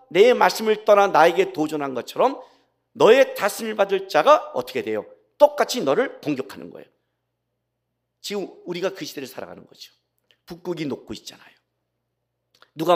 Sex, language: male, Korean